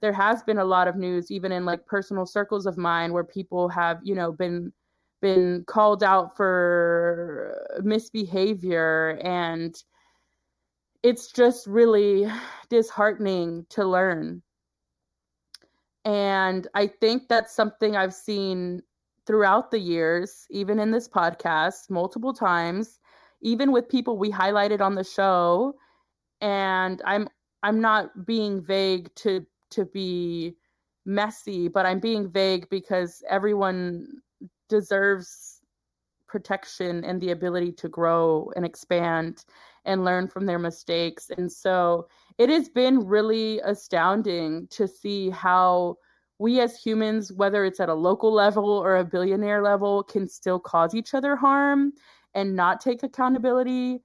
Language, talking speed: English, 130 wpm